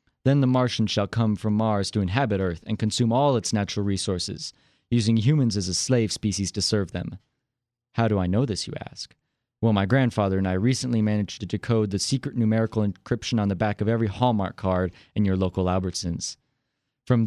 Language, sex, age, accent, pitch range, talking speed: English, male, 30-49, American, 100-125 Hz, 200 wpm